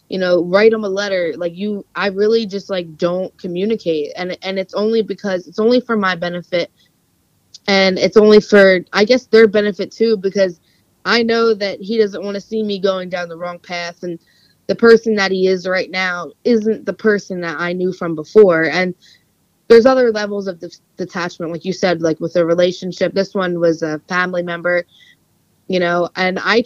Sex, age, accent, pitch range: female, 20-39, American, 180-210 Hz